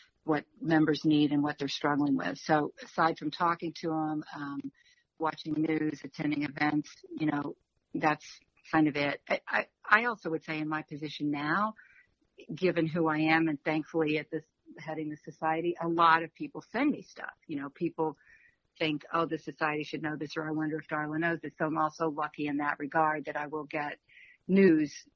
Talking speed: 195 wpm